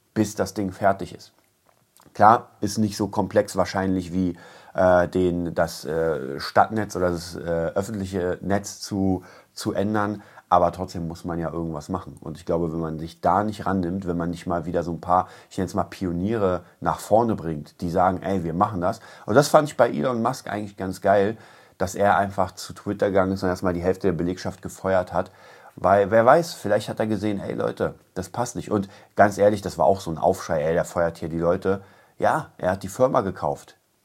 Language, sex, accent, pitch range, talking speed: German, male, German, 85-100 Hz, 210 wpm